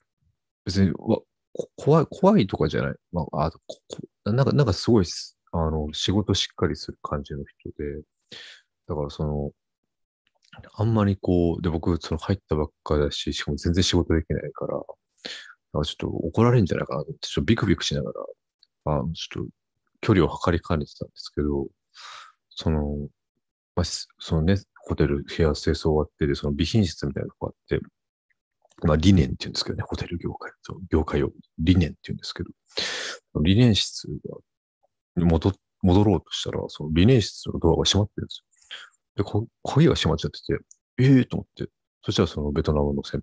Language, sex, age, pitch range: Japanese, male, 40-59, 75-100 Hz